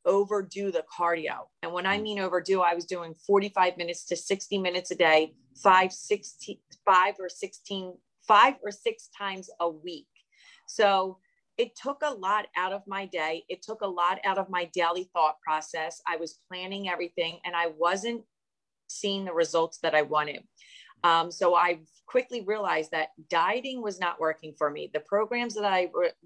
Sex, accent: female, American